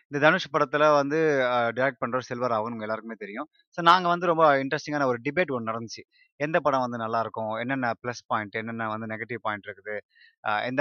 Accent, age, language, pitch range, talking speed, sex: native, 20-39, Tamil, 115-145 Hz, 190 wpm, male